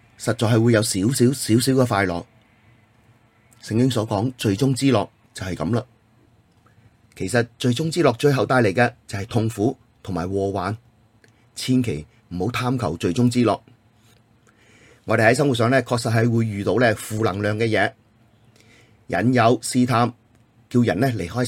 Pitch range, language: 110-125 Hz, Chinese